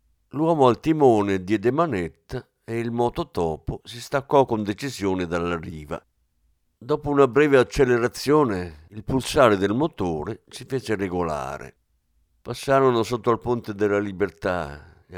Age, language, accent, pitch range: 50-69, Italian, native, 90-125 Hz